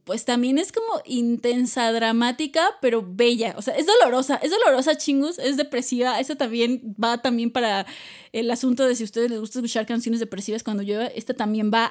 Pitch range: 235-280 Hz